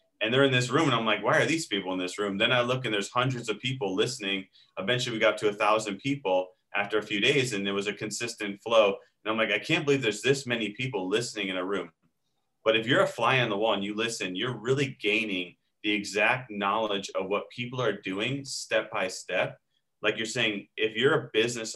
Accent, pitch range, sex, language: American, 100-130 Hz, male, English